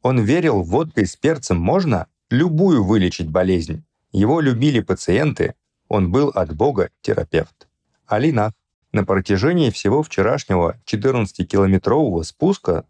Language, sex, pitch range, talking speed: Russian, male, 90-125 Hz, 110 wpm